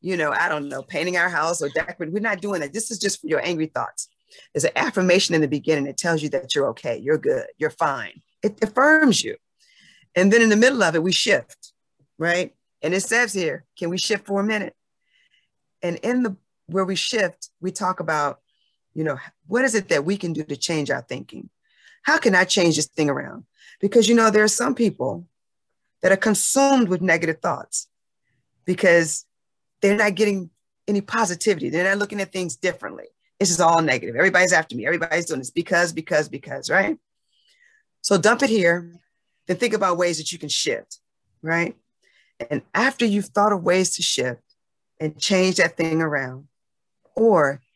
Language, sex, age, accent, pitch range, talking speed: English, female, 40-59, American, 160-215 Hz, 195 wpm